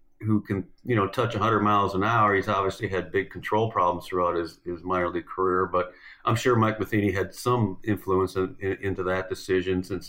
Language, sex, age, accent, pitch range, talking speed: English, male, 50-69, American, 95-115 Hz, 215 wpm